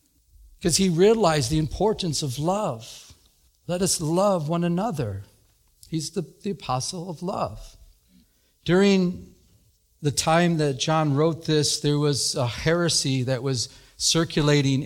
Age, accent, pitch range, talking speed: 50-69, American, 140-175 Hz, 130 wpm